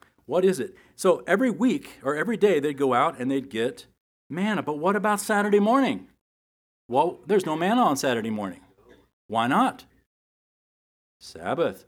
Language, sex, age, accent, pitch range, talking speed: English, male, 50-69, American, 120-190 Hz, 155 wpm